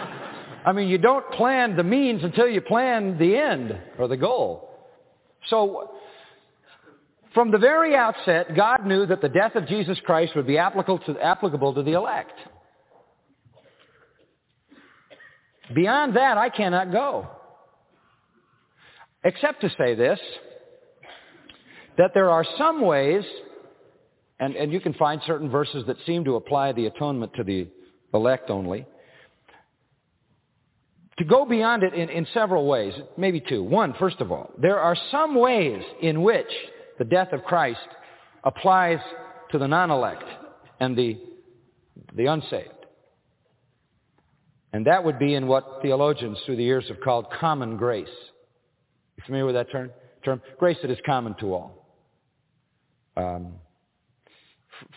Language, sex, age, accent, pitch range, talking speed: English, male, 50-69, American, 135-225 Hz, 140 wpm